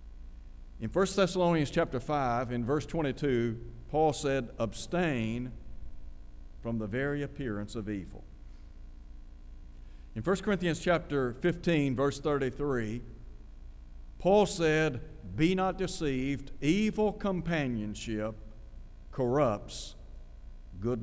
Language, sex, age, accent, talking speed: English, male, 60-79, American, 95 wpm